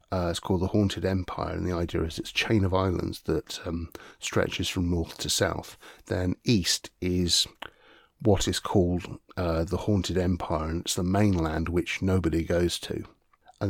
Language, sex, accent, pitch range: English, male, British, 85-100 Hz